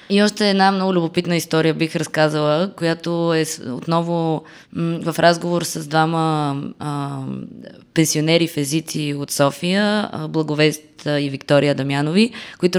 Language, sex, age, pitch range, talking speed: Bulgarian, female, 20-39, 145-180 Hz, 115 wpm